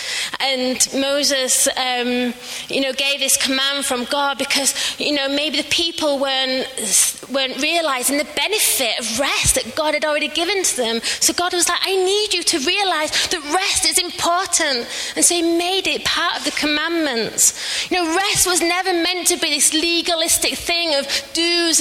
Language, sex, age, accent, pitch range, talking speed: English, female, 30-49, British, 245-320 Hz, 180 wpm